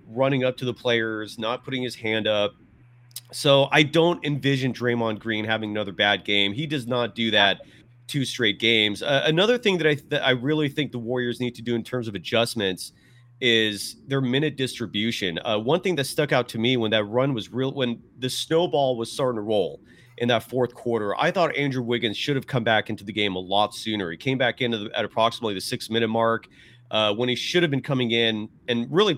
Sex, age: male, 30-49